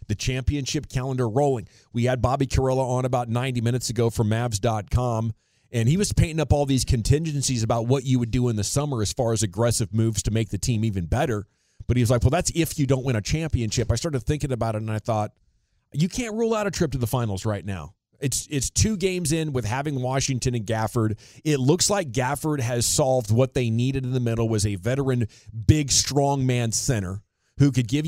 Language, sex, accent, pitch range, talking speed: English, male, American, 110-135 Hz, 225 wpm